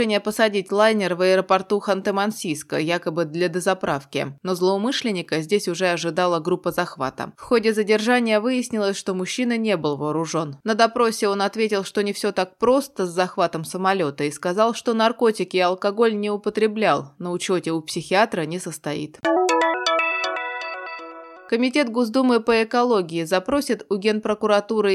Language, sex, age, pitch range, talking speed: Russian, female, 20-39, 180-220 Hz, 140 wpm